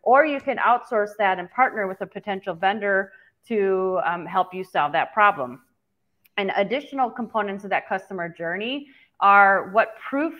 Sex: female